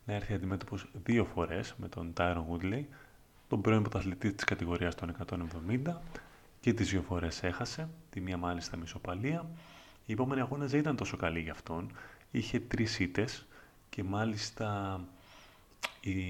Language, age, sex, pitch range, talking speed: Greek, 30-49, male, 90-115 Hz, 140 wpm